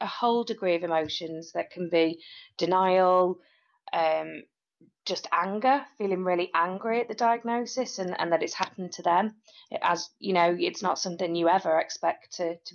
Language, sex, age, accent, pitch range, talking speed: English, female, 30-49, British, 170-200 Hz, 170 wpm